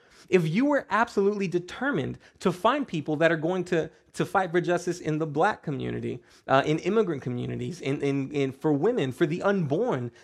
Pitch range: 130-185 Hz